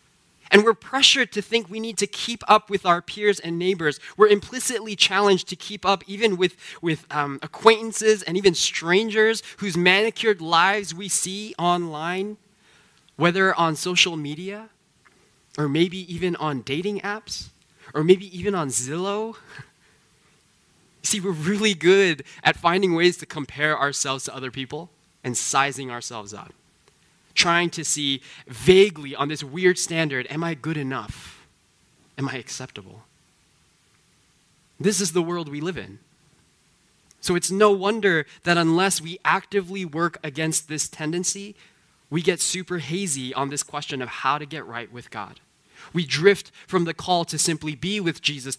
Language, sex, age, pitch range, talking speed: English, male, 20-39, 150-195 Hz, 155 wpm